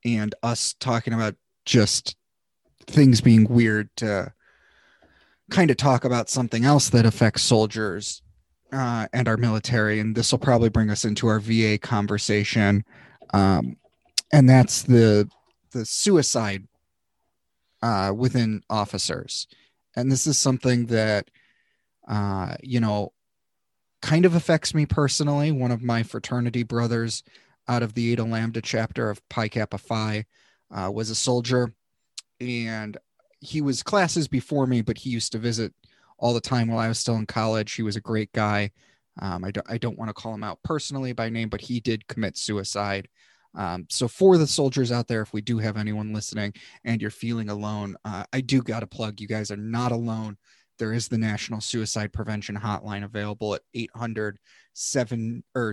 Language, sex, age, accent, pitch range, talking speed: English, male, 30-49, American, 105-125 Hz, 170 wpm